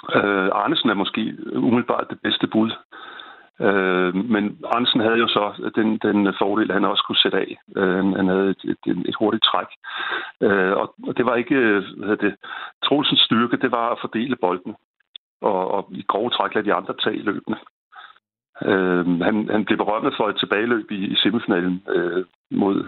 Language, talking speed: Danish, 175 wpm